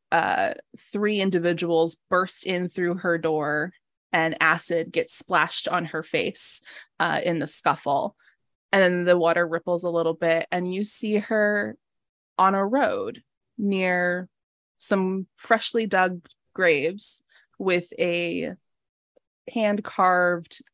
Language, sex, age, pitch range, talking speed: English, female, 20-39, 165-190 Hz, 120 wpm